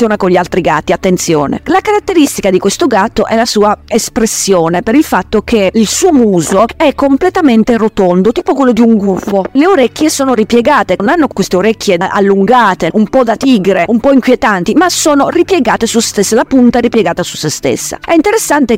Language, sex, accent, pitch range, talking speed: Italian, female, native, 190-260 Hz, 190 wpm